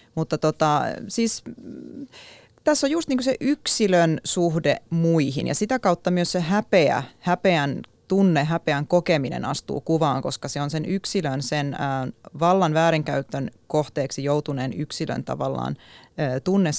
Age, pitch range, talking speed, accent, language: 30-49, 145-190 Hz, 130 wpm, native, Finnish